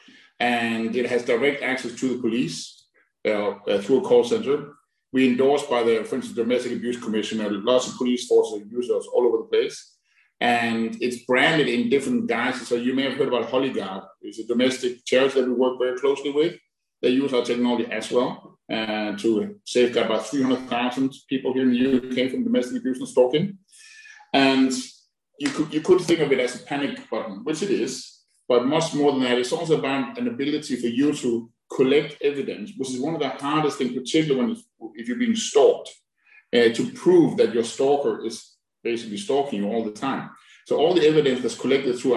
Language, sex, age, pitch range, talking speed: English, male, 50-69, 120-155 Hz, 200 wpm